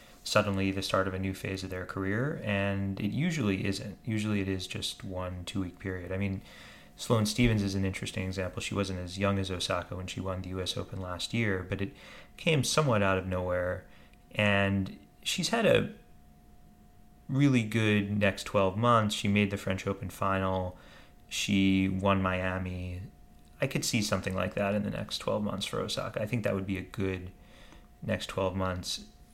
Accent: American